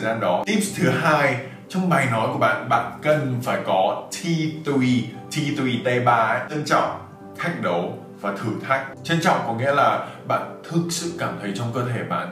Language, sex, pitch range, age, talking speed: Vietnamese, male, 120-165 Hz, 20-39, 180 wpm